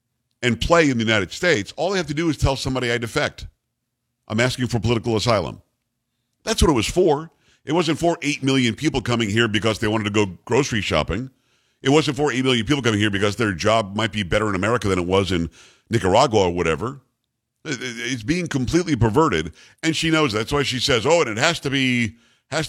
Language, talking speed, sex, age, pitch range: English, 215 wpm, male, 50-69, 115-140 Hz